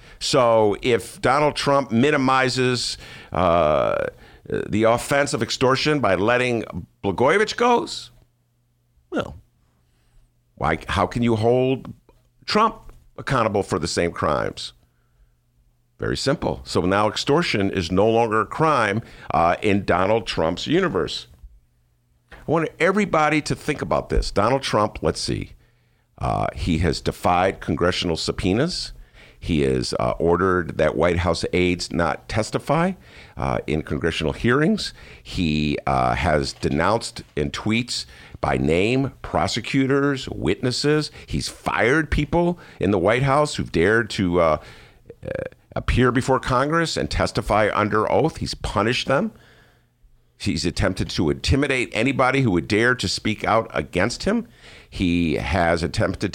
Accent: American